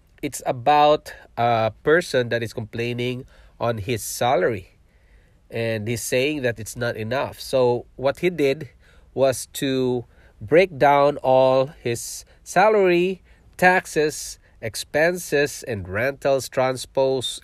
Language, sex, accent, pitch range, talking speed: English, male, Filipino, 115-145 Hz, 115 wpm